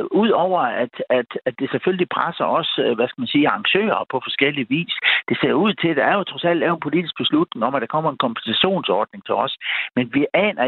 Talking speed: 225 wpm